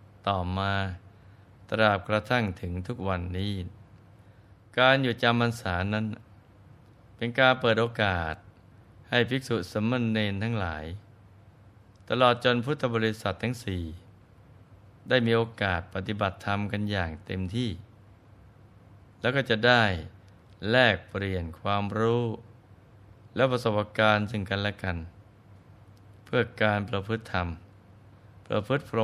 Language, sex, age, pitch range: Thai, male, 20-39, 100-115 Hz